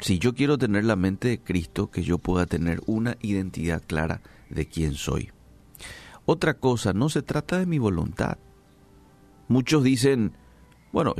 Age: 50-69